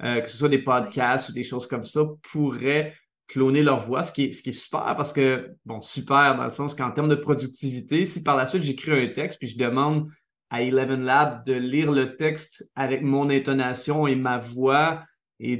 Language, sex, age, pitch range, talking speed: French, male, 20-39, 125-150 Hz, 220 wpm